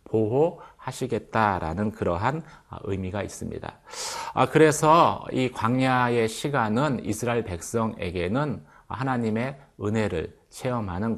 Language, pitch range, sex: Korean, 105-145 Hz, male